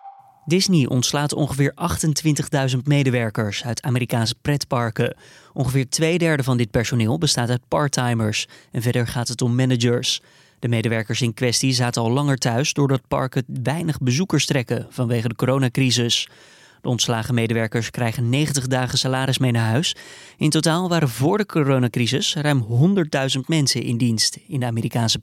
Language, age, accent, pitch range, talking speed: Dutch, 20-39, Dutch, 120-150 Hz, 150 wpm